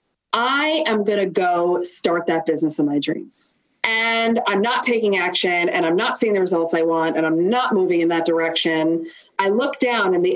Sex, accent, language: female, American, English